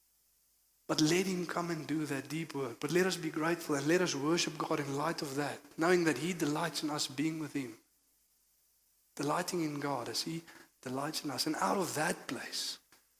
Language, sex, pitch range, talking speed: English, male, 150-170 Hz, 205 wpm